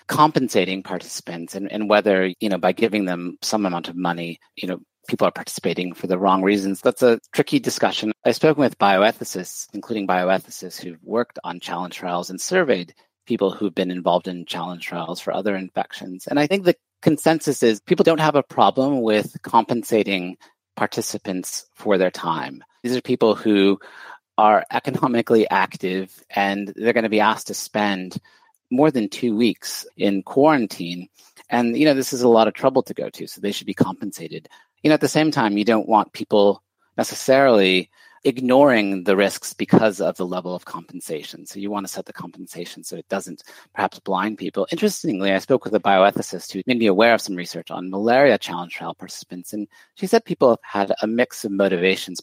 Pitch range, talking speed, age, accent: 95-120 Hz, 190 wpm, 30-49, American